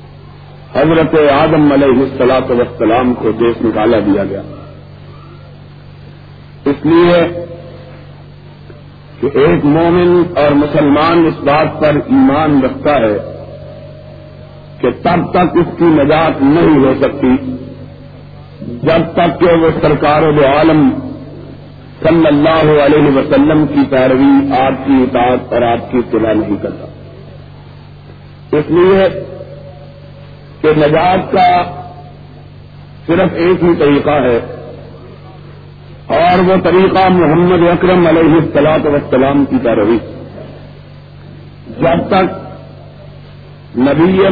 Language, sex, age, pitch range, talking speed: Urdu, male, 50-69, 140-175 Hz, 105 wpm